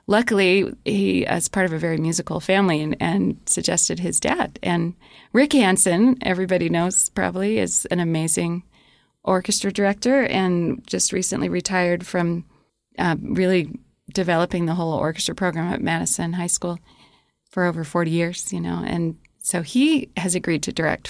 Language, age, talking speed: English, 30-49, 155 wpm